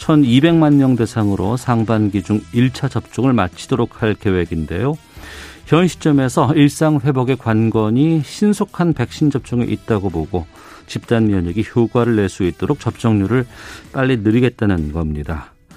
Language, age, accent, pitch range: Korean, 50-69, native, 100-145 Hz